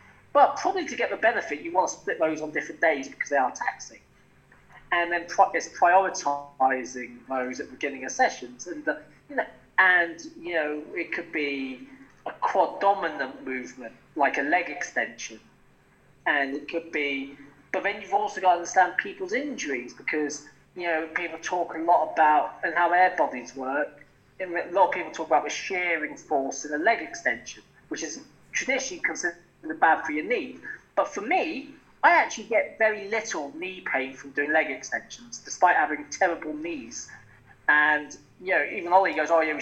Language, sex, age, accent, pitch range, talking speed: English, male, 20-39, British, 145-200 Hz, 180 wpm